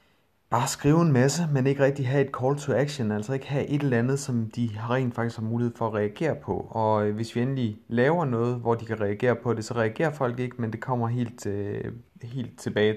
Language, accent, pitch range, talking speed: Danish, native, 105-125 Hz, 230 wpm